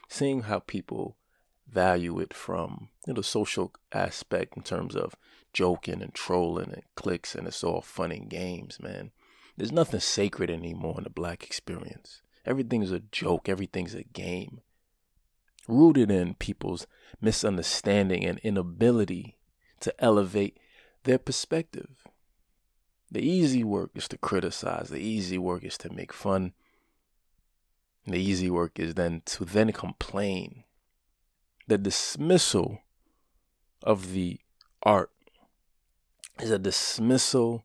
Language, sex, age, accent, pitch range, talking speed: English, male, 30-49, American, 90-120 Hz, 125 wpm